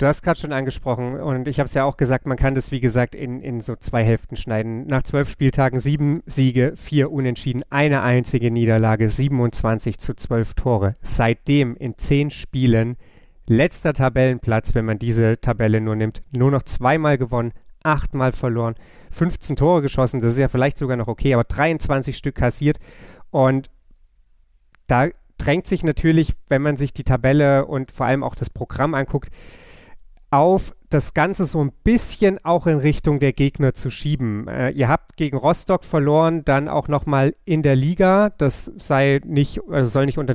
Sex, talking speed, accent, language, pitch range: male, 175 wpm, German, German, 125-150 Hz